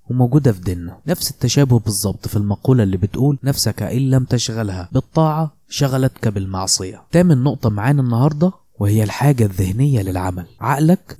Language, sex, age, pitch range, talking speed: Arabic, male, 20-39, 110-145 Hz, 145 wpm